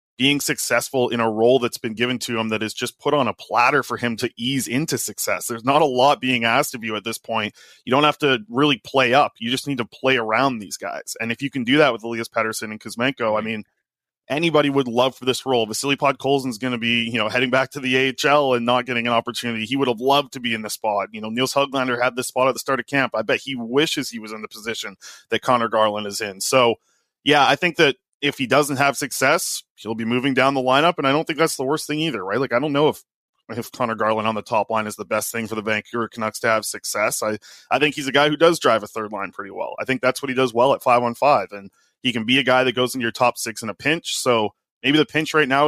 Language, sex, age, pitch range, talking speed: English, male, 20-39, 115-135 Hz, 285 wpm